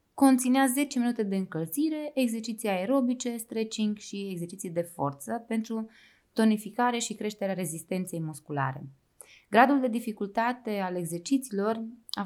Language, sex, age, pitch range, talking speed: Romanian, female, 20-39, 185-240 Hz, 115 wpm